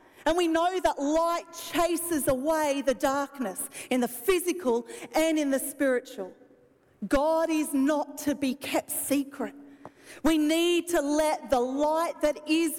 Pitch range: 255-315 Hz